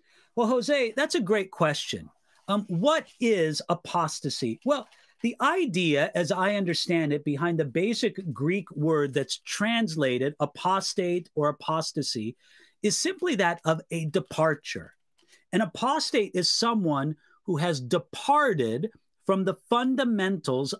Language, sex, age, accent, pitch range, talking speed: English, male, 40-59, American, 150-225 Hz, 125 wpm